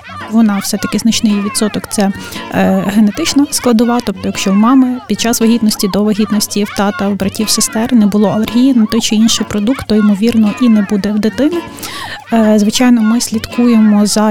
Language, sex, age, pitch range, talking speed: Ukrainian, female, 20-39, 205-230 Hz, 180 wpm